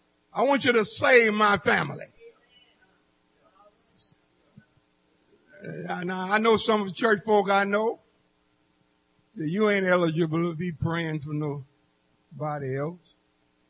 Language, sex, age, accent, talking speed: English, male, 60-79, American, 120 wpm